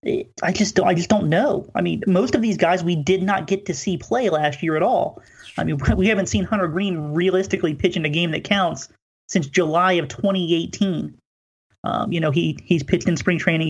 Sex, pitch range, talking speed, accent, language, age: male, 155-190 Hz, 220 wpm, American, English, 30-49